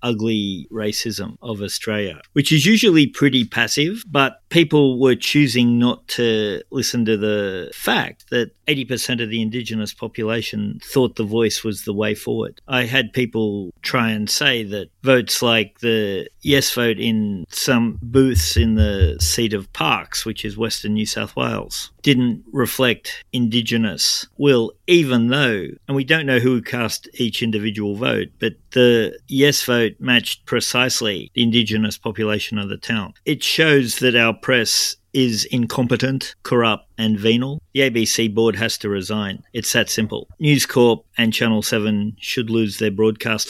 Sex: male